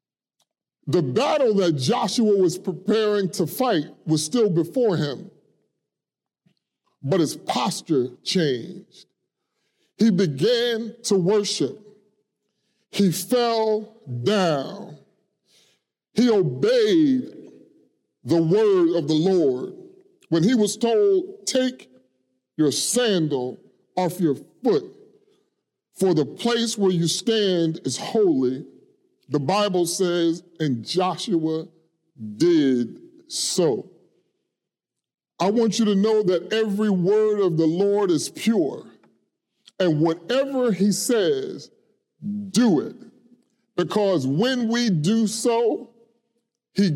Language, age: English, 40-59